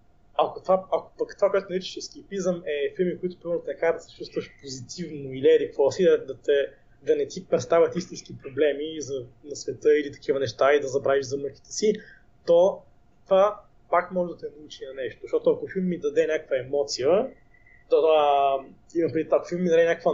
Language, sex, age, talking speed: Bulgarian, male, 20-39, 195 wpm